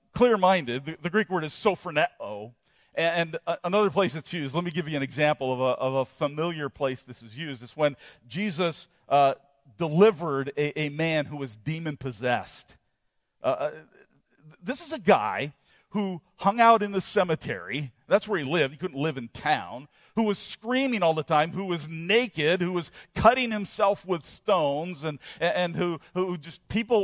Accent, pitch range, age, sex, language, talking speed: American, 135-185 Hz, 40-59, male, English, 180 wpm